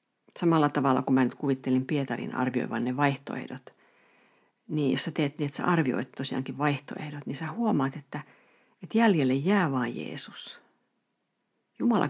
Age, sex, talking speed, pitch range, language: 50-69, female, 150 wpm, 135-175 Hz, Finnish